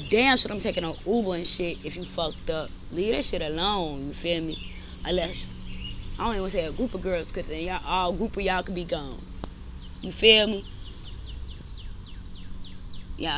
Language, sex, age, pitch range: English, female, 20-39, 155-205 Hz